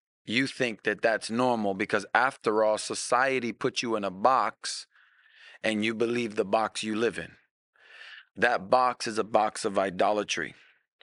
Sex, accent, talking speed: male, American, 160 wpm